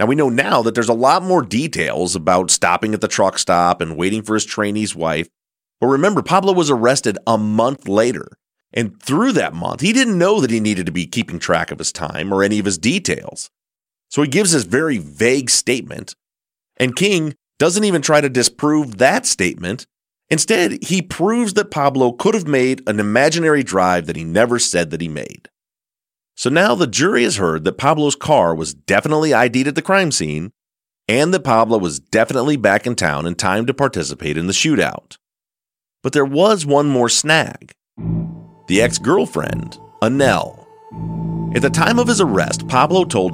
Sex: male